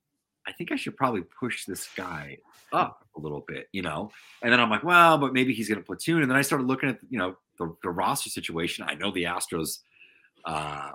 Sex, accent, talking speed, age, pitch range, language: male, American, 230 wpm, 30-49, 85-130 Hz, English